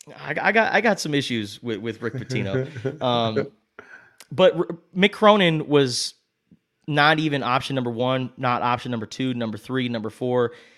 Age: 30-49